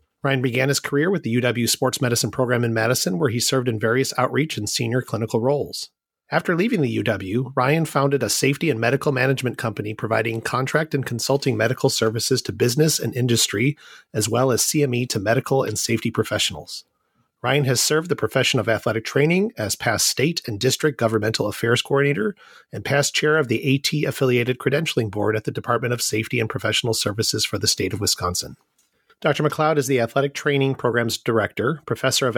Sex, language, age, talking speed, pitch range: male, English, 40-59, 185 wpm, 110-140 Hz